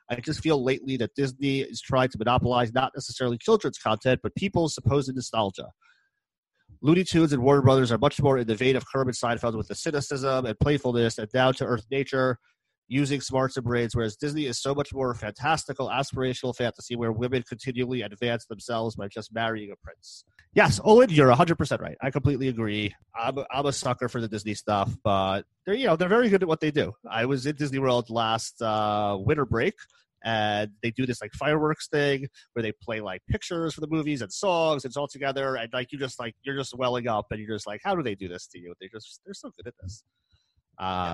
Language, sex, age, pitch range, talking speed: English, male, 30-49, 115-140 Hz, 215 wpm